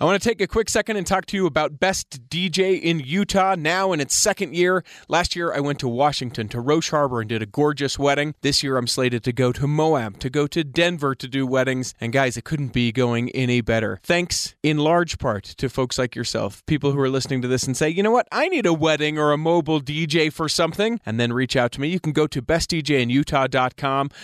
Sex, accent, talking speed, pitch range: male, American, 245 wpm, 125-165 Hz